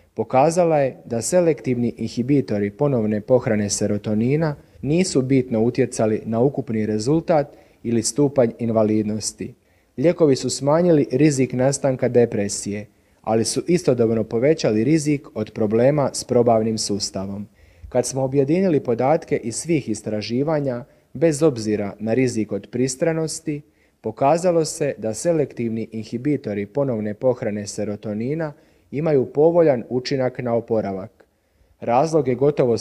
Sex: male